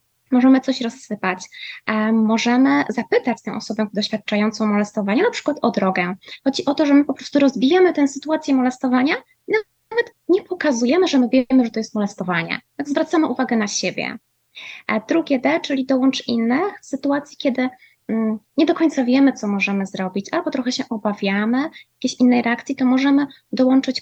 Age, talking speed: 20-39, 160 wpm